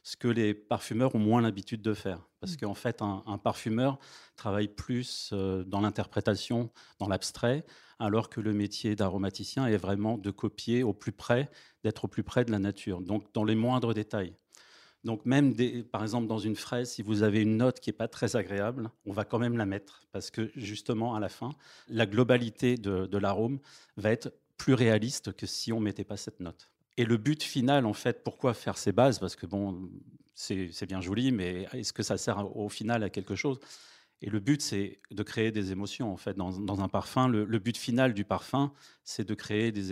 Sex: male